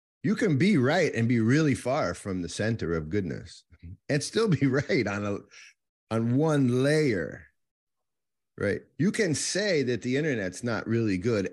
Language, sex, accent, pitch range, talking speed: English, male, American, 100-140 Hz, 165 wpm